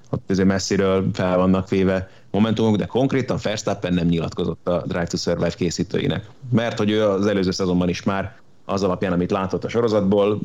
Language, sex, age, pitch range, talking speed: Hungarian, male, 30-49, 90-100 Hz, 180 wpm